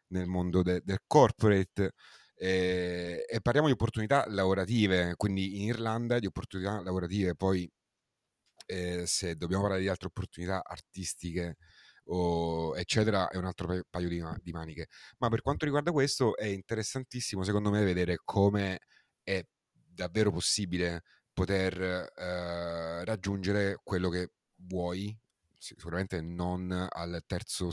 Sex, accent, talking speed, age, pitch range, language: male, native, 130 wpm, 30-49, 85-105 Hz, Italian